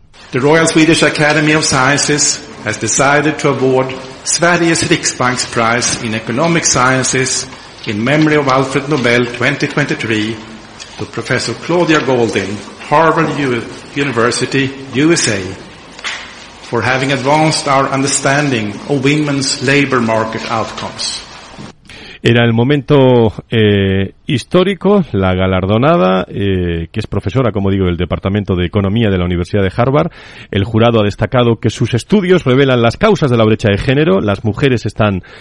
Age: 50-69